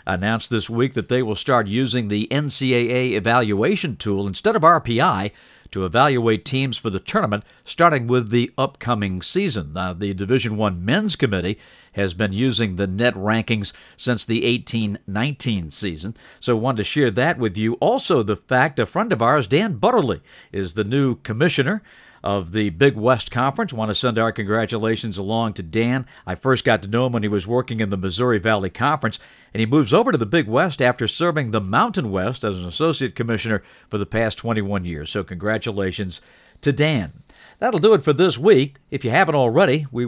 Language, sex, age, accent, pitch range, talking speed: English, male, 50-69, American, 105-130 Hz, 190 wpm